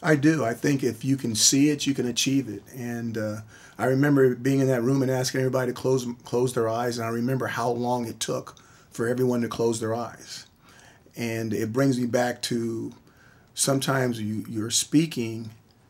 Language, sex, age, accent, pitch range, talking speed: English, male, 40-59, American, 110-130 Hz, 195 wpm